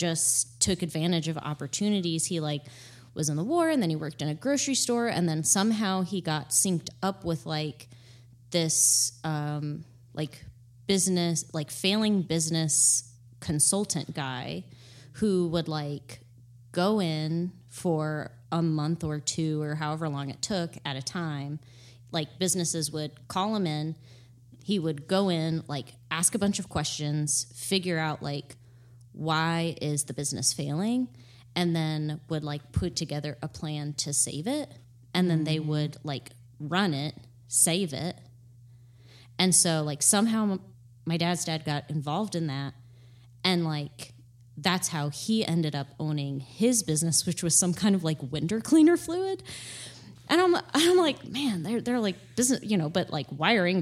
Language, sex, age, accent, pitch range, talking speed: English, female, 20-39, American, 135-180 Hz, 160 wpm